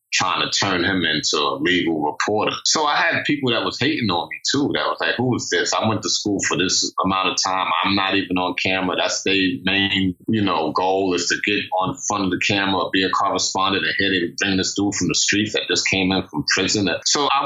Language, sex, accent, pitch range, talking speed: English, male, American, 95-110 Hz, 250 wpm